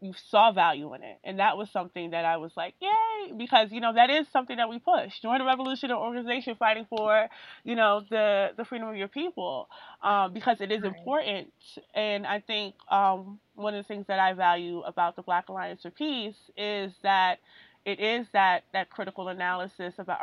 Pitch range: 180-230 Hz